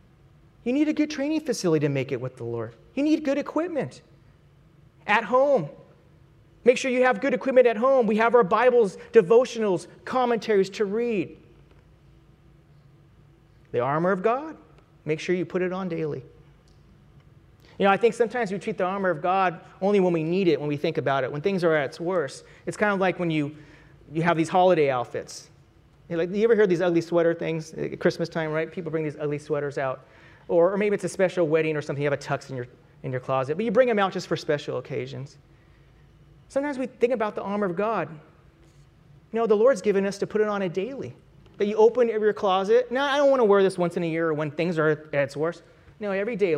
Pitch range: 150-220 Hz